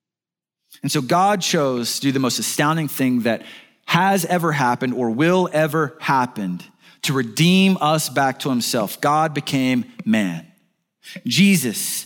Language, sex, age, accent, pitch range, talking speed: English, male, 30-49, American, 120-170 Hz, 140 wpm